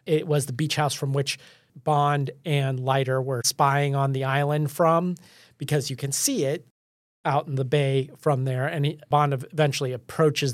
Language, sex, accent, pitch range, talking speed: English, male, American, 135-165 Hz, 175 wpm